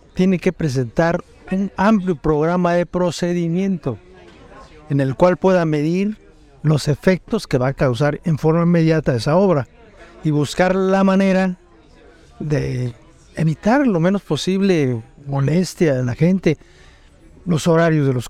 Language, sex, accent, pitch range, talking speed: Spanish, male, Mexican, 140-185 Hz, 135 wpm